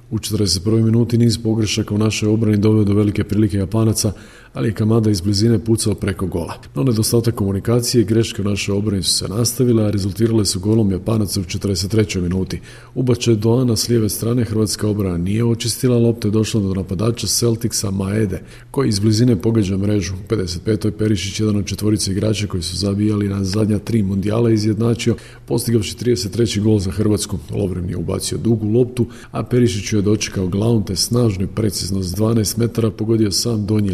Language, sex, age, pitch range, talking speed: Croatian, male, 40-59, 100-115 Hz, 175 wpm